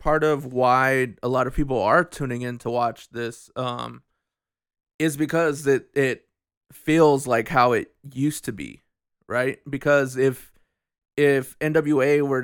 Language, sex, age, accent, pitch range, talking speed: English, male, 20-39, American, 120-145 Hz, 150 wpm